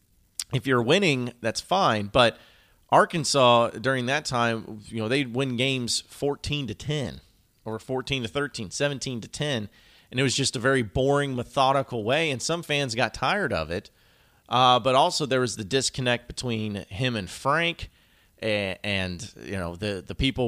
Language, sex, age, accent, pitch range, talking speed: English, male, 30-49, American, 110-135 Hz, 175 wpm